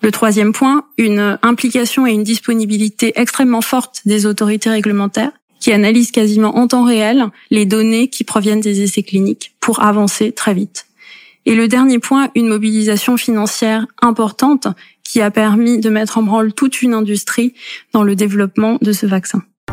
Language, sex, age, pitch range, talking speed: French, female, 20-39, 200-230 Hz, 165 wpm